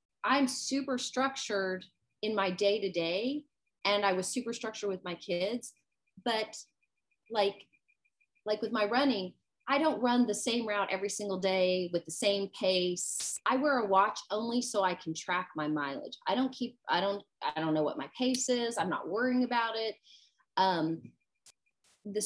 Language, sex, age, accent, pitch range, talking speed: English, female, 30-49, American, 180-255 Hz, 170 wpm